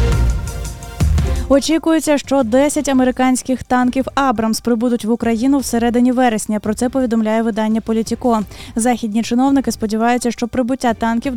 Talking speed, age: 120 wpm, 20-39